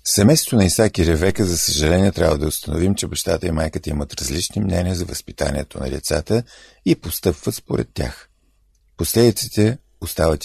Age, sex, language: 50-69, male, Bulgarian